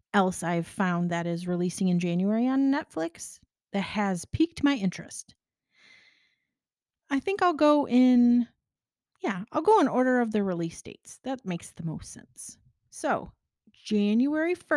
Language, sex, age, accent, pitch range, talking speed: English, female, 30-49, American, 190-240 Hz, 145 wpm